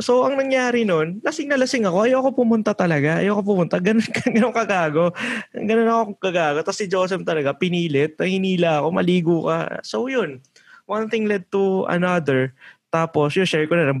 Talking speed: 175 wpm